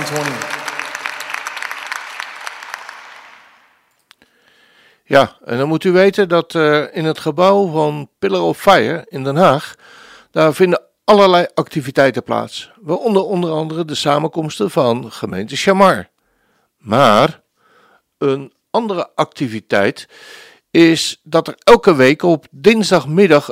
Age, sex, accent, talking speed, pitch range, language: 60-79, male, Dutch, 105 wpm, 150-200 Hz, Dutch